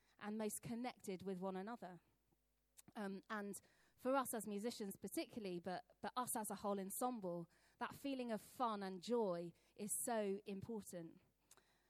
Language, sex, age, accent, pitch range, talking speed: English, female, 20-39, British, 190-255 Hz, 145 wpm